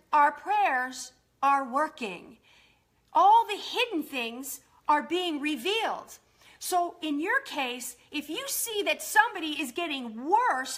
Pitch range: 300-390 Hz